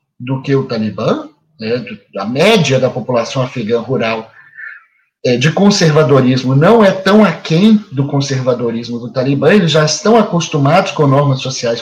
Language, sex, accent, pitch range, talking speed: Portuguese, male, Brazilian, 145-225 Hz, 145 wpm